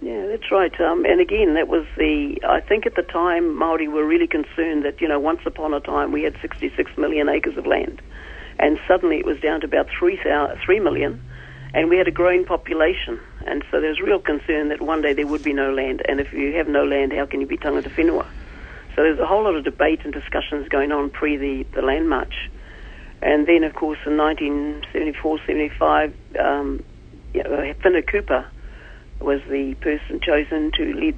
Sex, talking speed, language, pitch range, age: female, 205 wpm, English, 145-180 Hz, 50-69